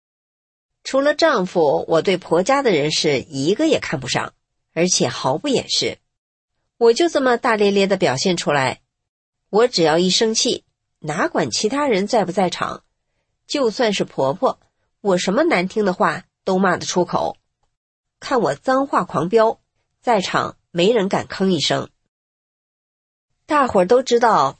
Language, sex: English, female